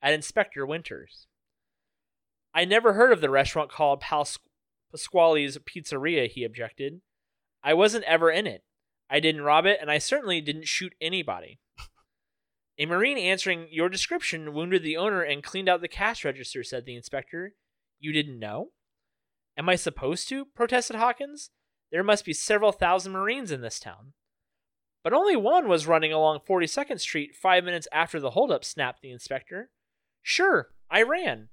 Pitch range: 145-195 Hz